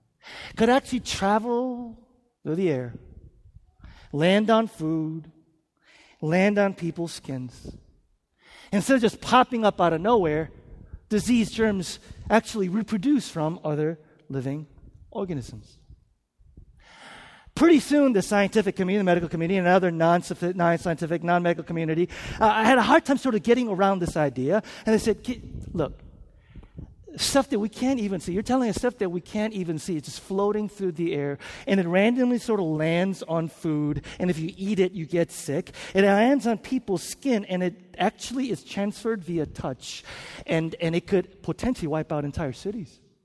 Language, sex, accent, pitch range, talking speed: English, male, American, 155-215 Hz, 160 wpm